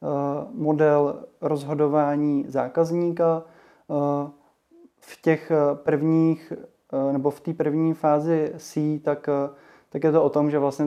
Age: 20-39